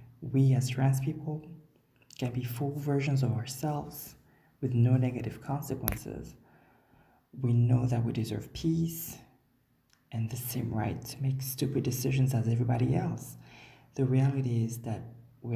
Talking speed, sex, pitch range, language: 140 wpm, male, 120-140 Hz, English